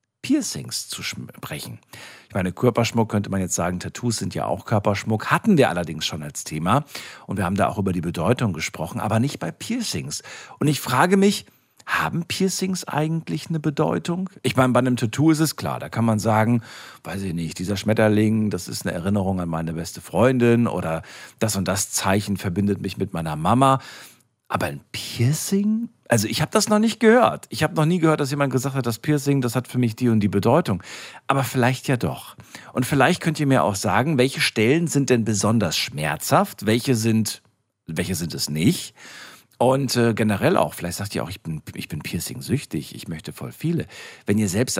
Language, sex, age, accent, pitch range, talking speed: German, male, 50-69, German, 100-140 Hz, 200 wpm